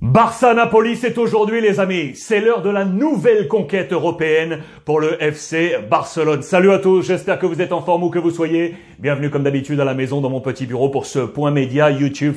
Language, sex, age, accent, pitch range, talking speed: French, male, 30-49, French, 140-185 Hz, 215 wpm